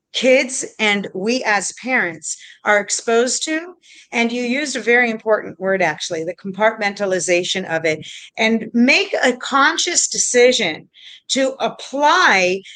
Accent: American